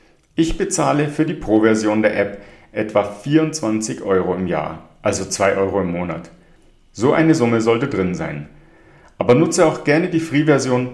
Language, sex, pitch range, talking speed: German, male, 105-145 Hz, 160 wpm